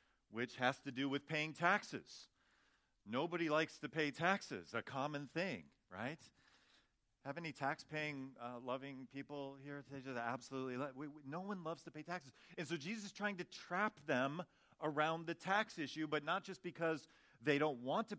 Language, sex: English, male